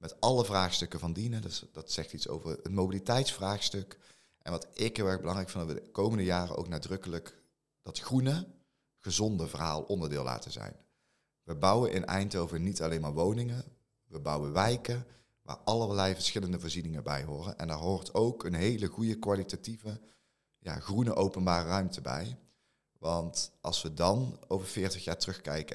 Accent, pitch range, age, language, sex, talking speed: Belgian, 85-105 Hz, 30-49, Dutch, male, 160 wpm